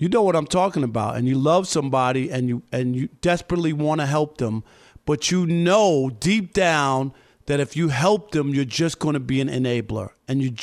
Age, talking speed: 50-69, 215 wpm